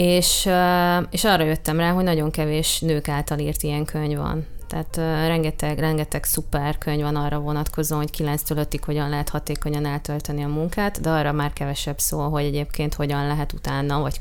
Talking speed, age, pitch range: 175 wpm, 20-39, 145-165 Hz